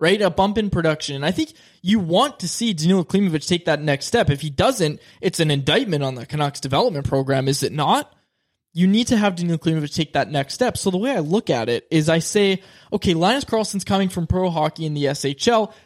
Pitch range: 150-195 Hz